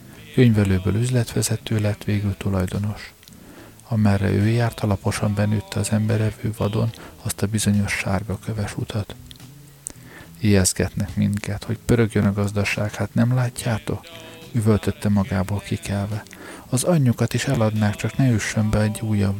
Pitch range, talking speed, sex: 100-115 Hz, 125 wpm, male